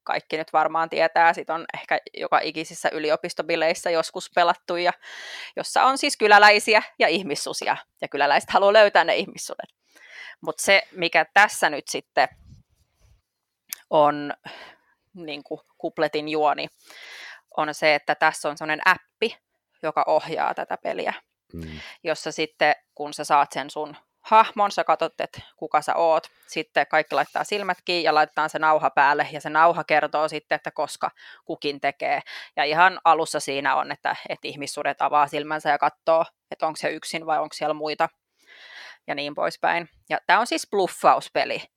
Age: 20-39